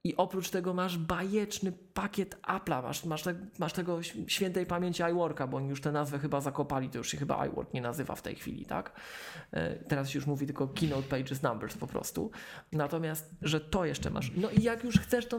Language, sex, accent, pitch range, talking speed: Polish, male, native, 150-210 Hz, 210 wpm